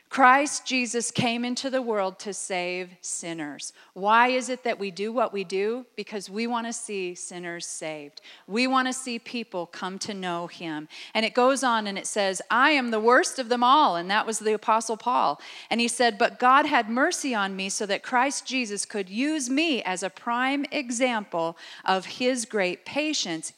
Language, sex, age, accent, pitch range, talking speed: English, female, 40-59, American, 195-260 Hz, 200 wpm